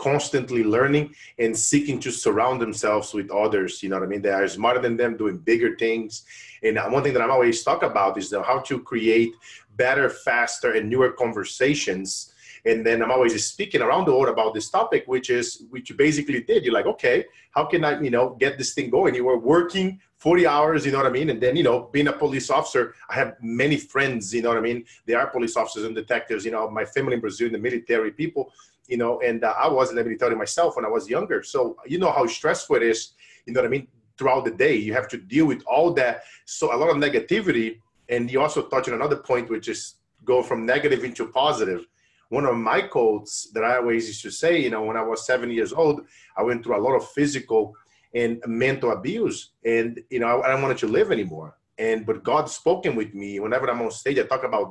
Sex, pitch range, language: male, 115-145 Hz, English